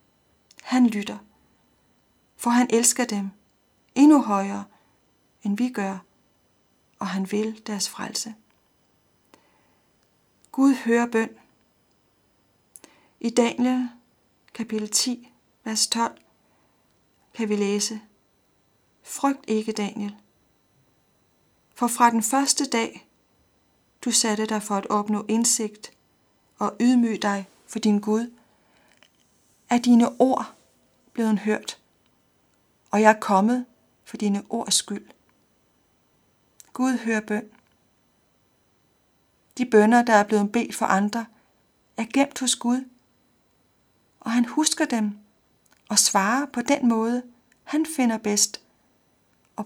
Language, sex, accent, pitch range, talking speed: Danish, female, native, 210-245 Hz, 110 wpm